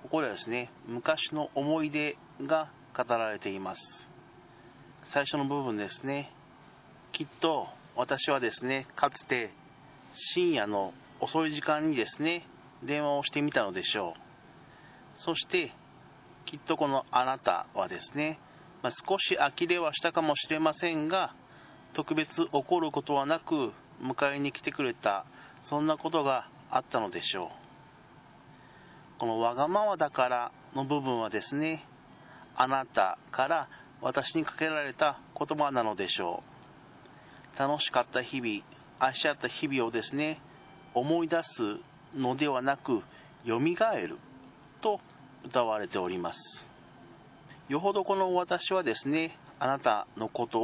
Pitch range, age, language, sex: 130-160 Hz, 40-59, Japanese, male